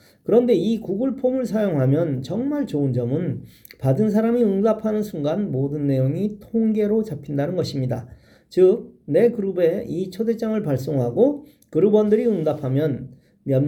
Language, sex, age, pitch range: Korean, male, 40-59, 140-210 Hz